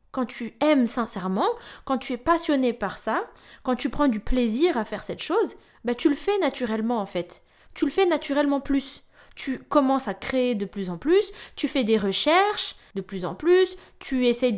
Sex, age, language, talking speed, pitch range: female, 20-39, French, 200 wpm, 215-305 Hz